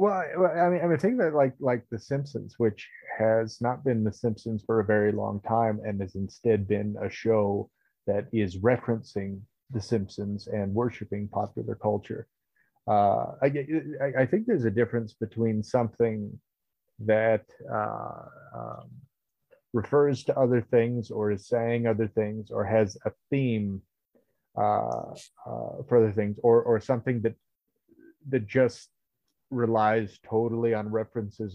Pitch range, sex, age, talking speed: 105-120 Hz, male, 30-49, 145 wpm